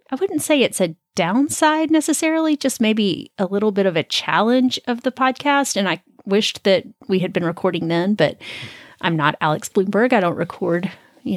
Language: English